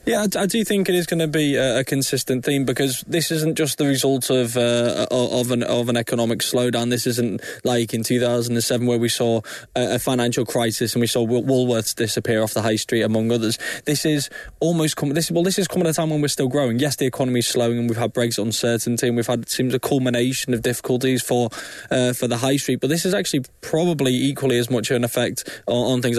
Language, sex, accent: English, male, British